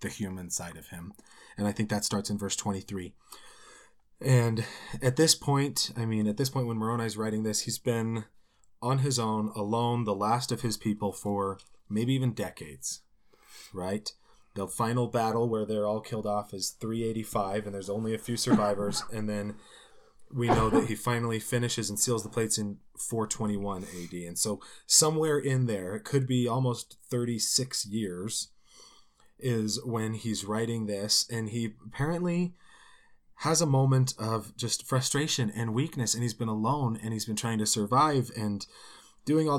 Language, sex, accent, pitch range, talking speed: English, male, American, 110-145 Hz, 175 wpm